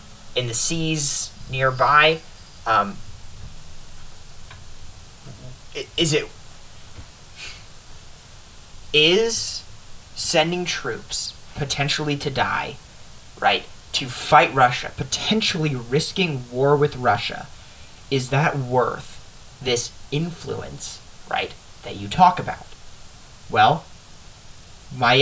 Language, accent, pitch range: English, American, 110-150 Hz